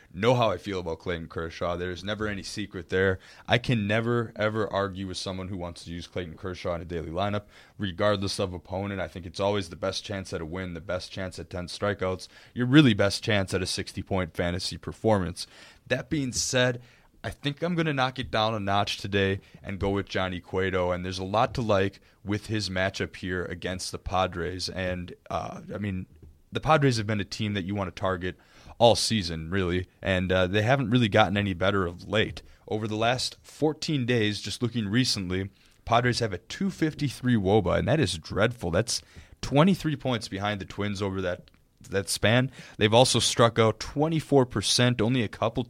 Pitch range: 90-110 Hz